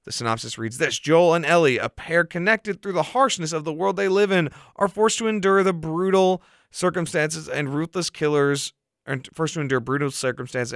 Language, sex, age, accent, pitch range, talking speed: English, male, 30-49, American, 125-175 Hz, 195 wpm